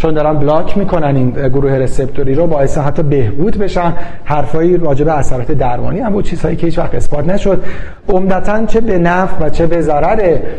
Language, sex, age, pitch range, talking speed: Persian, male, 40-59, 135-170 Hz, 175 wpm